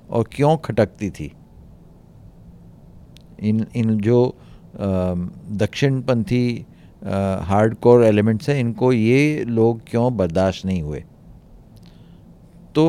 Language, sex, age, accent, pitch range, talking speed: Hindi, male, 50-69, native, 100-125 Hz, 90 wpm